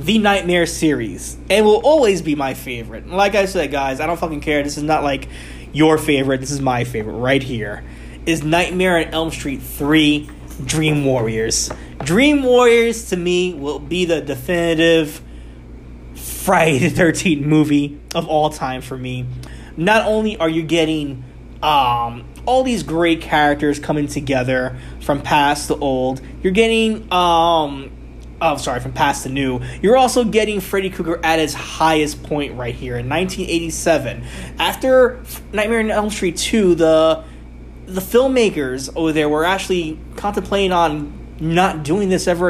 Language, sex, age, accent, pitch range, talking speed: English, male, 20-39, American, 130-180 Hz, 160 wpm